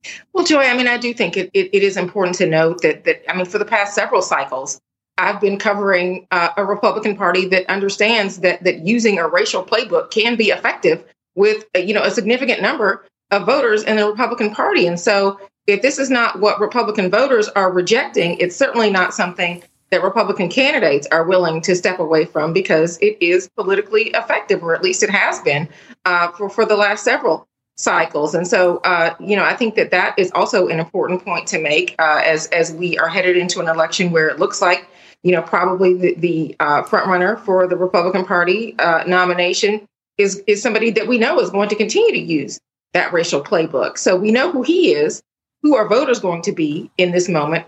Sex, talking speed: female, 210 wpm